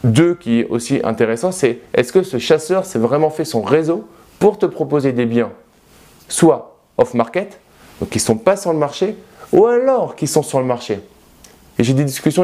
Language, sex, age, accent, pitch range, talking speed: French, male, 20-39, French, 130-185 Hz, 200 wpm